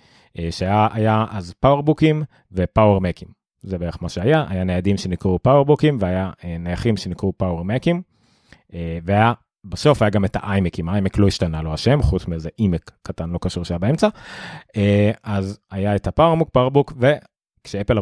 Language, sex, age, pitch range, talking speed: Hebrew, male, 30-49, 95-125 Hz, 135 wpm